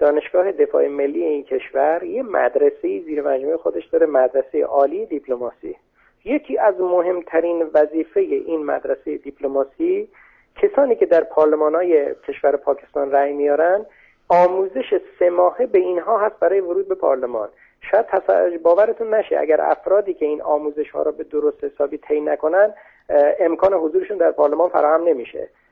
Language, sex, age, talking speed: Persian, male, 40-59, 140 wpm